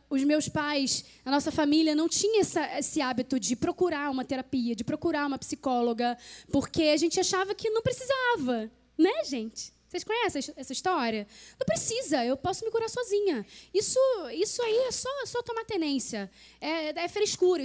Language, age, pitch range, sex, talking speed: Portuguese, 10-29, 250-355 Hz, female, 165 wpm